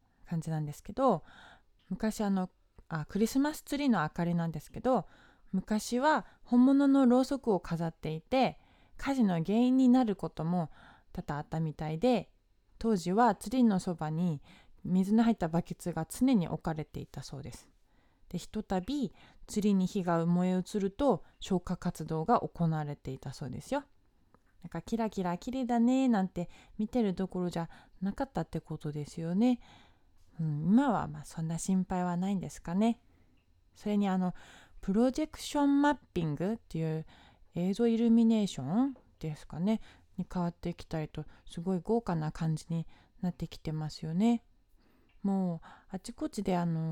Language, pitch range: Japanese, 165-230 Hz